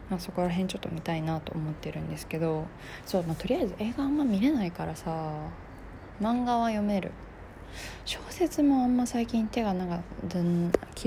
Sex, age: female, 20-39